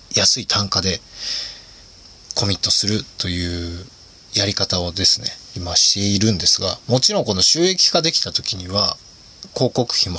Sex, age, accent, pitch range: male, 20-39, native, 90-130 Hz